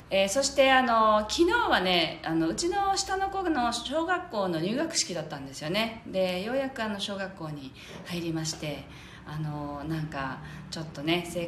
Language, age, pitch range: Japanese, 40-59, 150-220 Hz